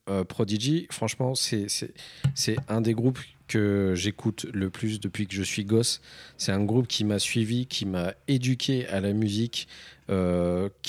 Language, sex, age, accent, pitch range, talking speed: French, male, 40-59, French, 100-120 Hz, 170 wpm